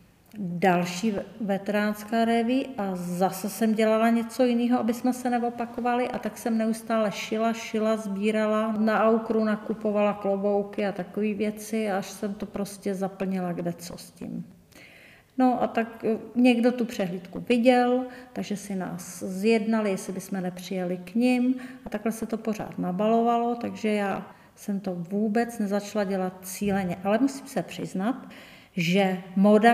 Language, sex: Czech, female